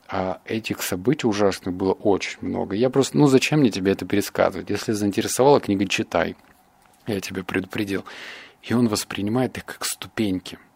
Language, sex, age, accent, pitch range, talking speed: Russian, male, 30-49, native, 100-135 Hz, 155 wpm